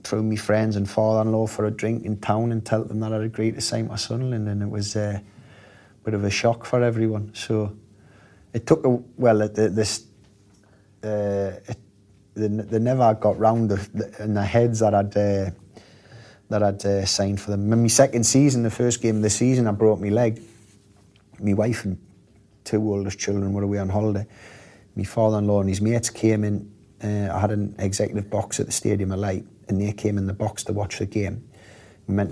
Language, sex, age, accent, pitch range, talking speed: English, male, 30-49, British, 100-115 Hz, 210 wpm